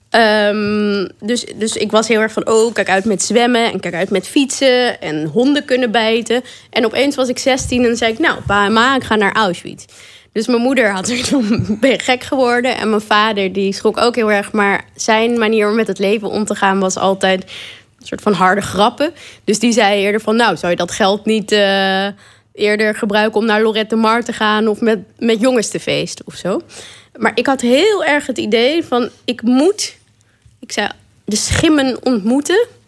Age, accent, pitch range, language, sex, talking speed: 20-39, Dutch, 200-245 Hz, Dutch, female, 210 wpm